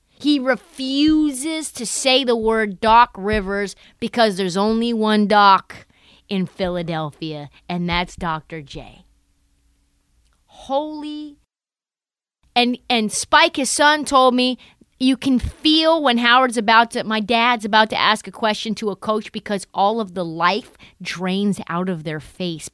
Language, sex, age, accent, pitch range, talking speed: English, female, 30-49, American, 185-280 Hz, 140 wpm